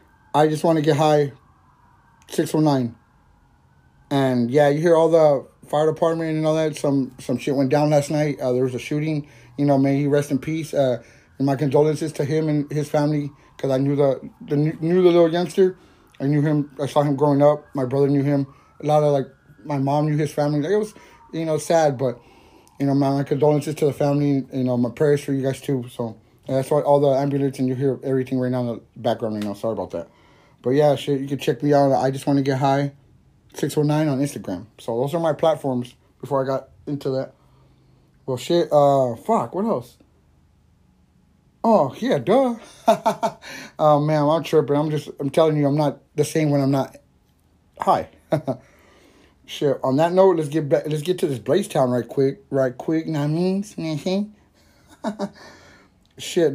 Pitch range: 135-155 Hz